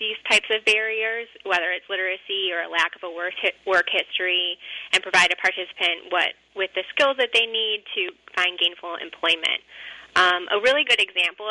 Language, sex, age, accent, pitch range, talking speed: English, female, 20-39, American, 175-205 Hz, 175 wpm